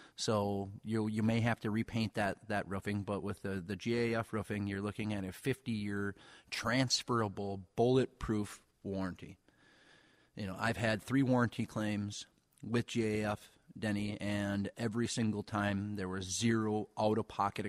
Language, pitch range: English, 100-115 Hz